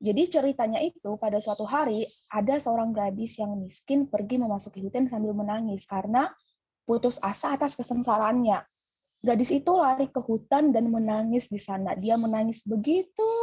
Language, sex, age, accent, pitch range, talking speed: Indonesian, female, 20-39, native, 205-260 Hz, 145 wpm